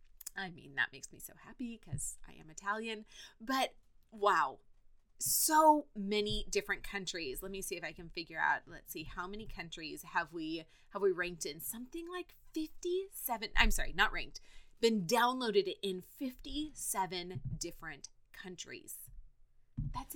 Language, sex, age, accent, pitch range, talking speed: English, female, 20-39, American, 180-245 Hz, 150 wpm